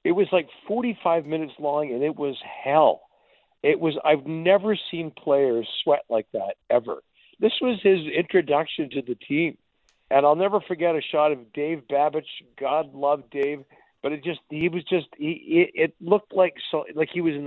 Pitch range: 140-185 Hz